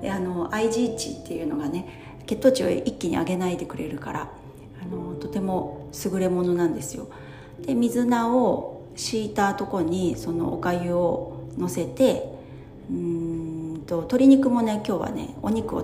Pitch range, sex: 170-215 Hz, female